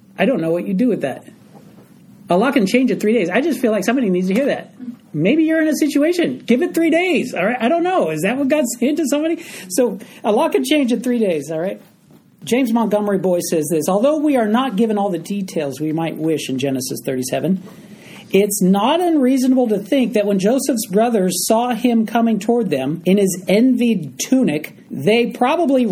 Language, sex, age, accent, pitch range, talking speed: English, male, 40-59, American, 185-255 Hz, 220 wpm